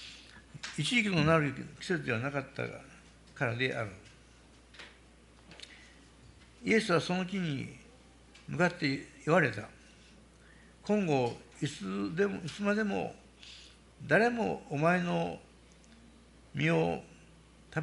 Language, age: Japanese, 60-79